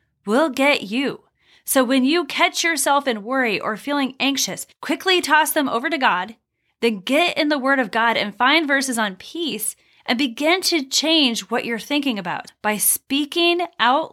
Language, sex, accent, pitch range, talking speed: English, female, American, 230-300 Hz, 180 wpm